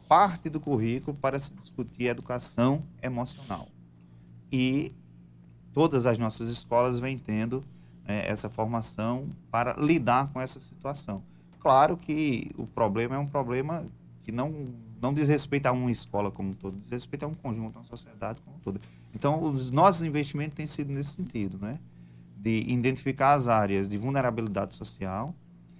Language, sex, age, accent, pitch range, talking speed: Portuguese, male, 20-39, Brazilian, 105-145 Hz, 155 wpm